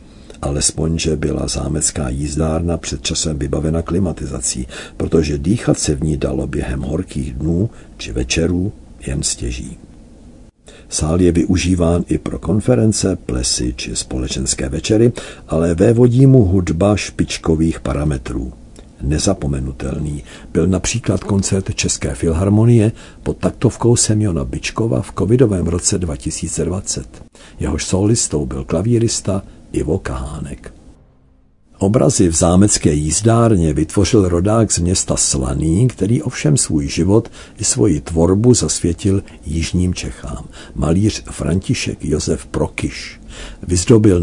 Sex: male